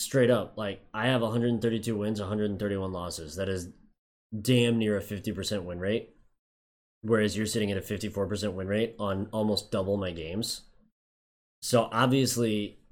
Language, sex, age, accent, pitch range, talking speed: English, male, 20-39, American, 95-110 Hz, 150 wpm